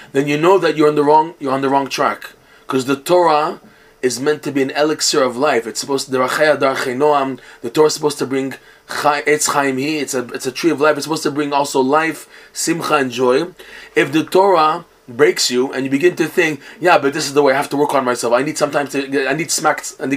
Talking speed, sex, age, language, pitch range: 240 wpm, male, 20-39, English, 135-160 Hz